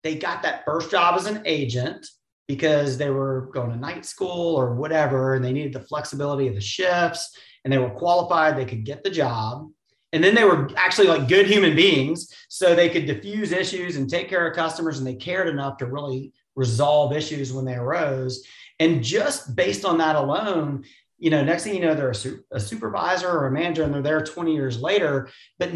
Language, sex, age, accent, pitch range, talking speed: English, male, 30-49, American, 130-175 Hz, 210 wpm